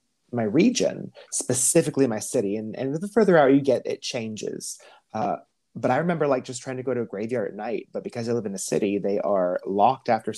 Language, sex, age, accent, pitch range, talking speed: English, male, 30-49, American, 115-150 Hz, 225 wpm